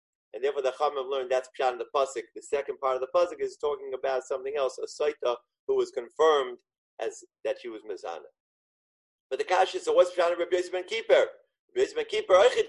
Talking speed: 210 wpm